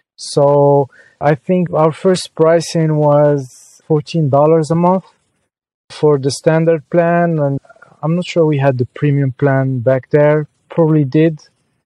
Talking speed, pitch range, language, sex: 135 wpm, 140-165 Hz, English, male